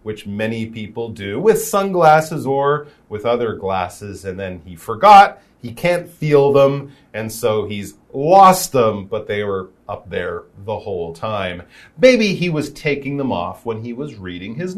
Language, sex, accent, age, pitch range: Chinese, male, American, 40-59, 115-175 Hz